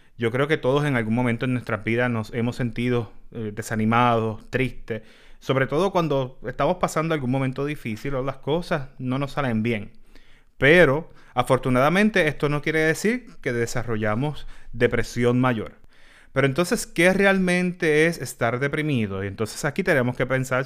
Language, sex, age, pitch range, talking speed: Spanish, male, 30-49, 120-145 Hz, 155 wpm